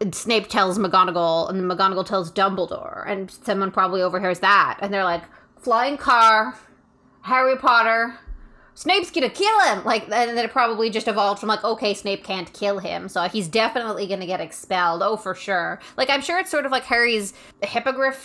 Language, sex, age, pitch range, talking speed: English, female, 20-39, 190-235 Hz, 180 wpm